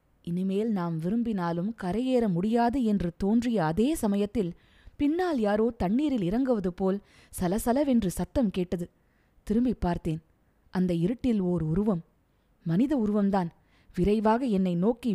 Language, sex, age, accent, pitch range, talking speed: Tamil, female, 20-39, native, 180-235 Hz, 110 wpm